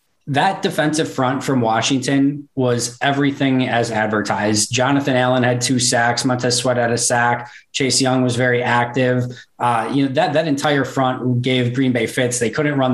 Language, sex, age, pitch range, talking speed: English, male, 20-39, 120-135 Hz, 175 wpm